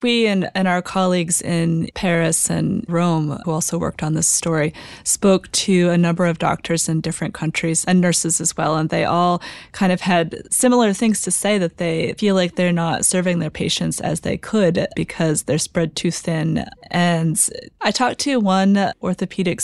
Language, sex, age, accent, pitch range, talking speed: English, female, 20-39, American, 170-200 Hz, 185 wpm